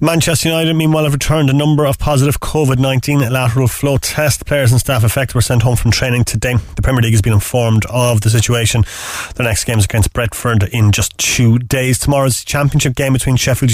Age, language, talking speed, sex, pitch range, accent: 30-49, English, 205 wpm, male, 110-135 Hz, Irish